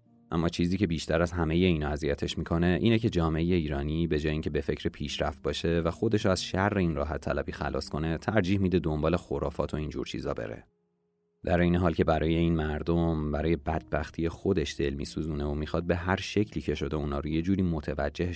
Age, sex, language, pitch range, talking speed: 30-49, male, Persian, 75-90 Hz, 205 wpm